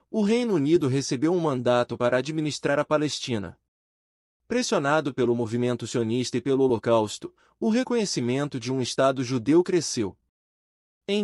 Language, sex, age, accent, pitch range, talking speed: Portuguese, male, 30-49, Brazilian, 115-170 Hz, 135 wpm